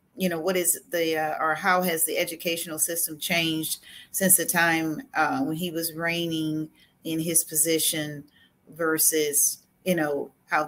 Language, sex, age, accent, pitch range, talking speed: English, female, 40-59, American, 160-190 Hz, 155 wpm